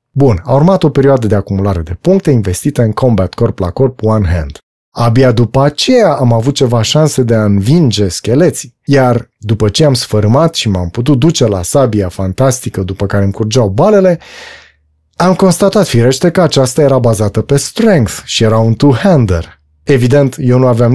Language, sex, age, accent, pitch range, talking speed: Romanian, male, 30-49, native, 105-145 Hz, 180 wpm